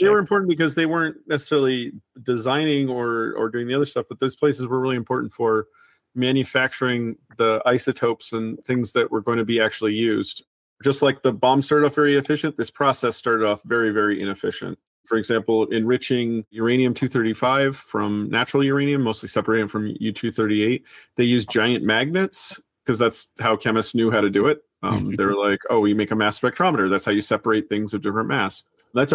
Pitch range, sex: 110-140 Hz, male